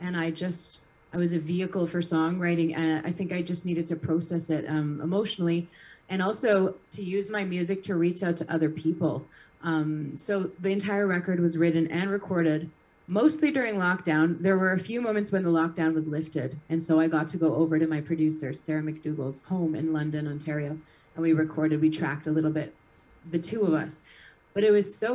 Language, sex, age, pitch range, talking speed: English, female, 30-49, 160-190 Hz, 205 wpm